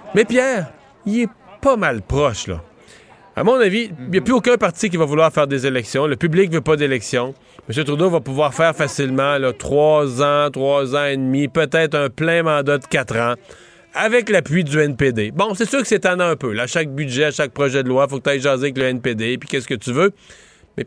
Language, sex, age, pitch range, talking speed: French, male, 30-49, 130-175 Hz, 240 wpm